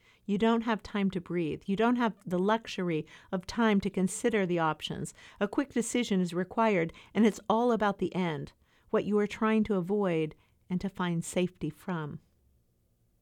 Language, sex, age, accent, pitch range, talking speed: English, female, 50-69, American, 160-210 Hz, 175 wpm